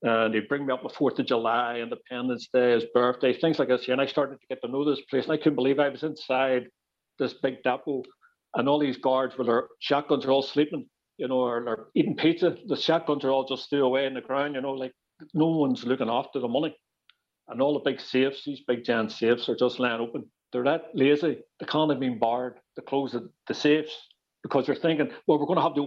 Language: English